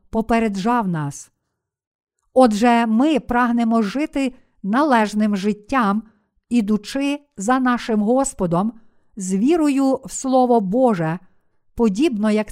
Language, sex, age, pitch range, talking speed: Ukrainian, female, 50-69, 210-260 Hz, 90 wpm